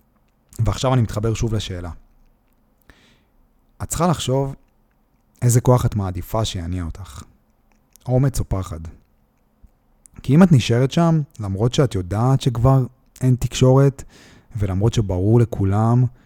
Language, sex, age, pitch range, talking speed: Hebrew, male, 30-49, 100-125 Hz, 115 wpm